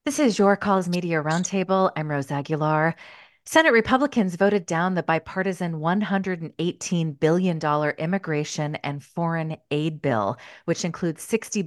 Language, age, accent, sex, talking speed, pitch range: English, 30-49, American, female, 130 wpm, 150-190 Hz